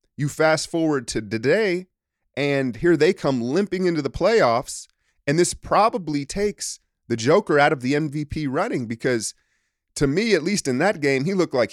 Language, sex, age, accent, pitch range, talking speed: English, male, 30-49, American, 105-145 Hz, 180 wpm